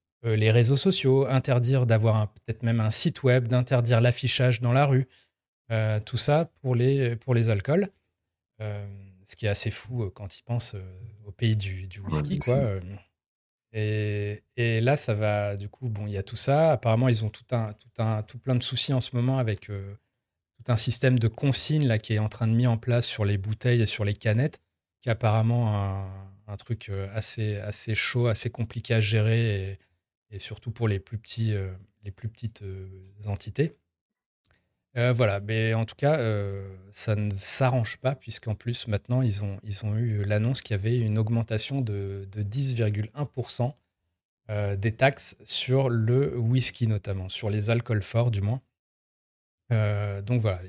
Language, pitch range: French, 100-120 Hz